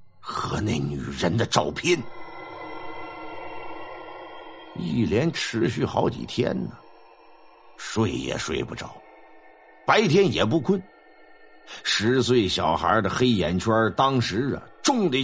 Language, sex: Chinese, male